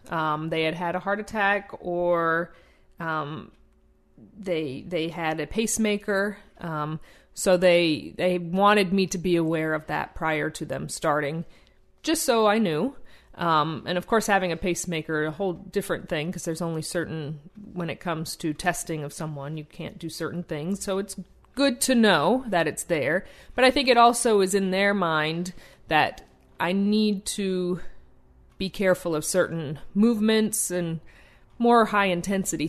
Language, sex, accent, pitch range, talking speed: English, female, American, 160-200 Hz, 165 wpm